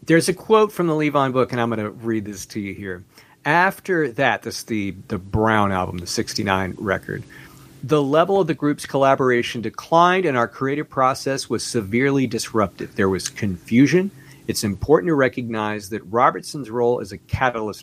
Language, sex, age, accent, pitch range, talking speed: English, male, 50-69, American, 105-140 Hz, 180 wpm